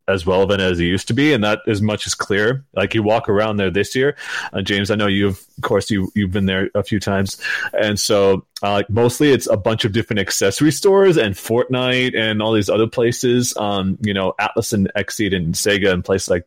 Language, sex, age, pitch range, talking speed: English, male, 30-49, 100-120 Hz, 235 wpm